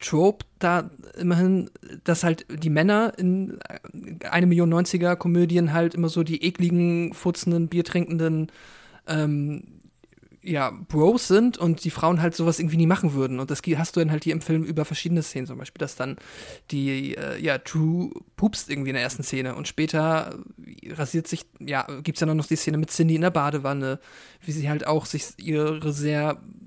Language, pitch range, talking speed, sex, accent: German, 150-175 Hz, 180 wpm, male, German